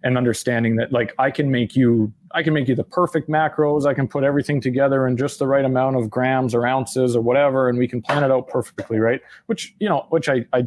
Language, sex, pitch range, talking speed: English, male, 115-140 Hz, 255 wpm